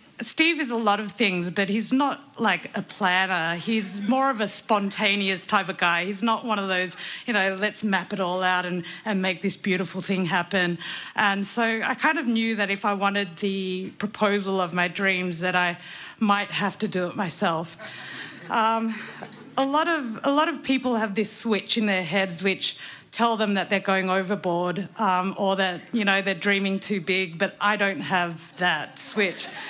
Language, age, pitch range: English, 30-49, 195-235 Hz